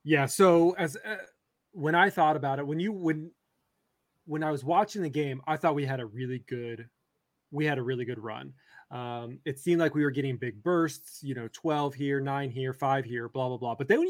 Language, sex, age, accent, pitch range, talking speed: English, male, 20-39, American, 135-165 Hz, 230 wpm